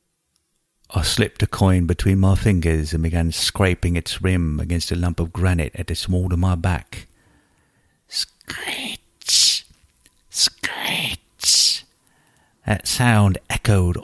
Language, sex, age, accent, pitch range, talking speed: English, male, 50-69, British, 85-105 Hz, 120 wpm